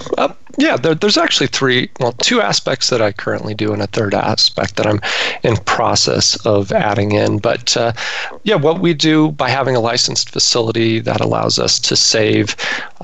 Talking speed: 185 wpm